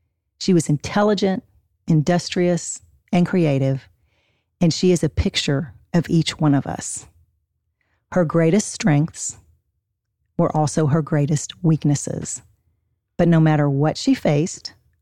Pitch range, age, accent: 105-175 Hz, 40-59, American